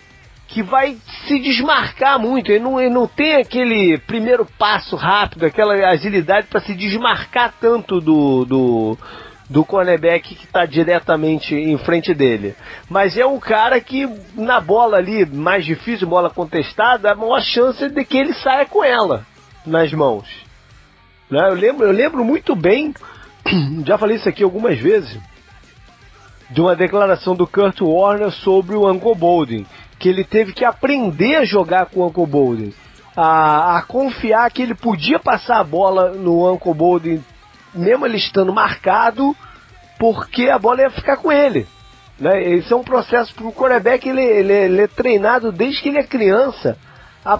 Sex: male